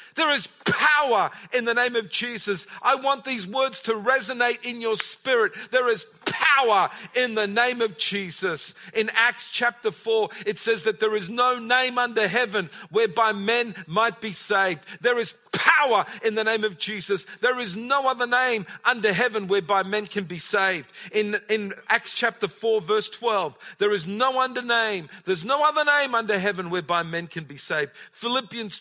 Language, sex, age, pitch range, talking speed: English, male, 50-69, 200-260 Hz, 180 wpm